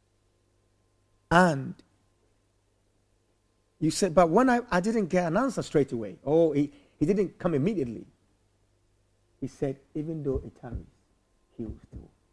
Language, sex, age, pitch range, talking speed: English, male, 50-69, 95-130 Hz, 130 wpm